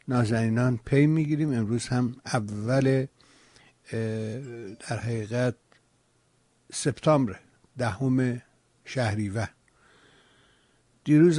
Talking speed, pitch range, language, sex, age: 70 wpm, 110-130 Hz, Persian, male, 60-79